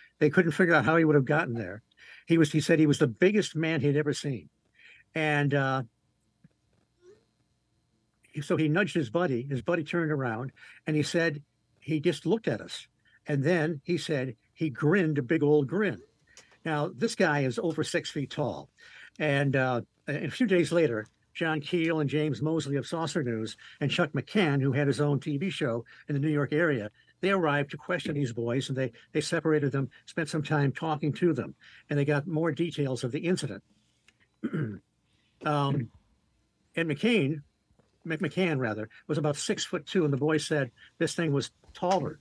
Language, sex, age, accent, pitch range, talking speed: English, male, 60-79, American, 140-170 Hz, 190 wpm